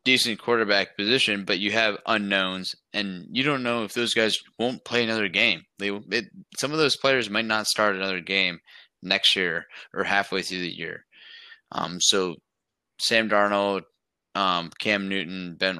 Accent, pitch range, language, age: American, 95-110 Hz, English, 20-39